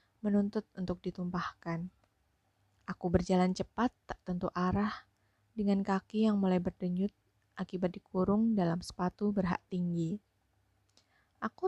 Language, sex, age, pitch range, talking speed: Indonesian, female, 20-39, 165-195 Hz, 110 wpm